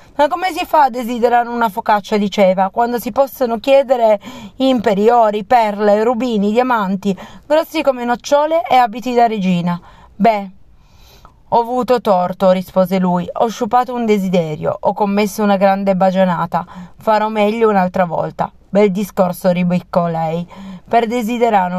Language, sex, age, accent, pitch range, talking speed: Italian, female, 30-49, native, 185-235 Hz, 140 wpm